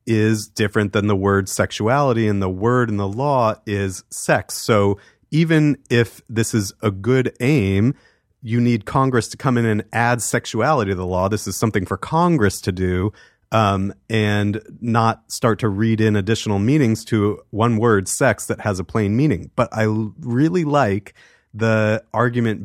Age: 30-49